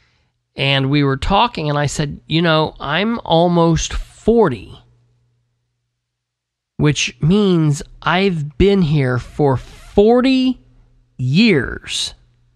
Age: 40-59